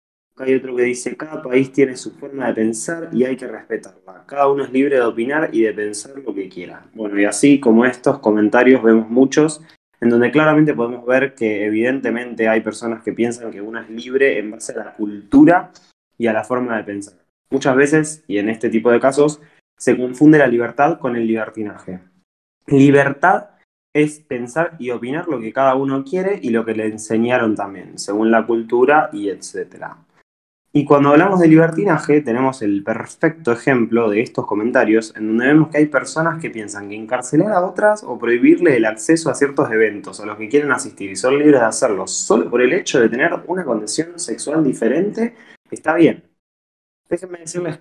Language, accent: Spanish, Argentinian